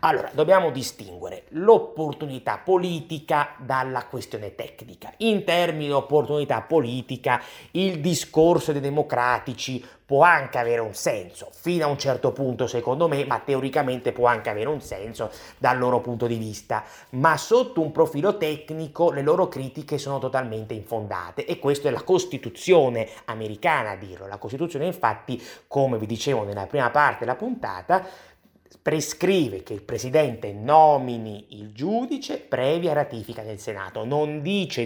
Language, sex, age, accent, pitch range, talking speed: Italian, male, 30-49, native, 130-165 Hz, 145 wpm